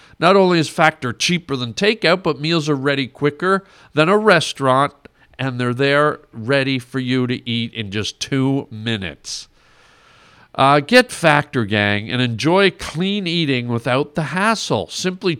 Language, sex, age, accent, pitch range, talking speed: English, male, 50-69, American, 130-185 Hz, 150 wpm